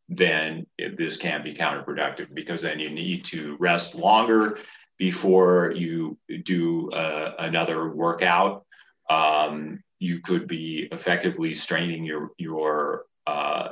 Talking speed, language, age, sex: 120 wpm, Persian, 40-59, male